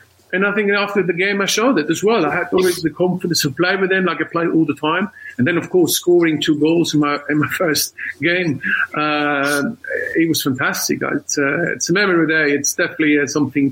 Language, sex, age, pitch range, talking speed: English, male, 50-69, 150-195 Hz, 235 wpm